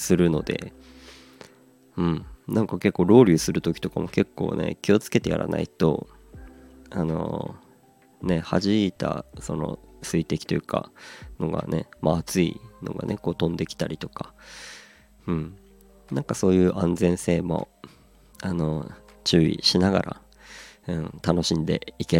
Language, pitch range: Japanese, 75-95 Hz